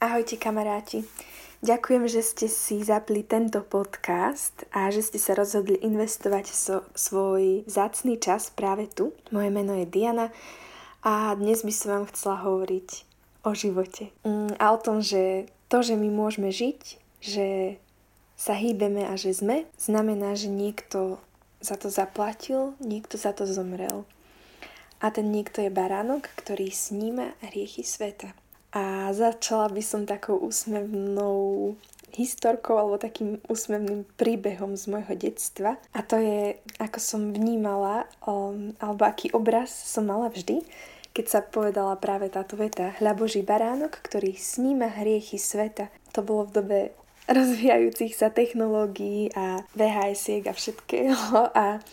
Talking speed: 135 wpm